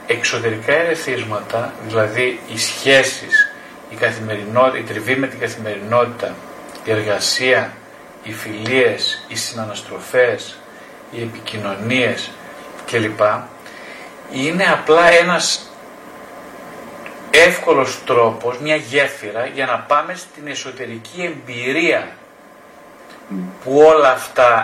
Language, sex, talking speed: Greek, male, 90 wpm